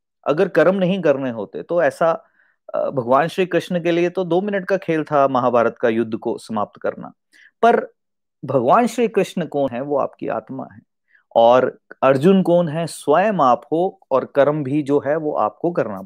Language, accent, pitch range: Hindi, native, 135-185 Hz